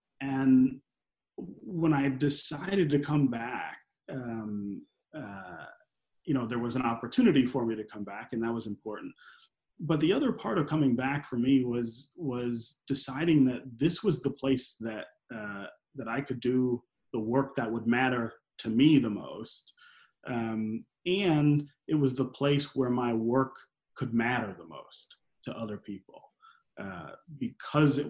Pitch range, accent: 115-140 Hz, American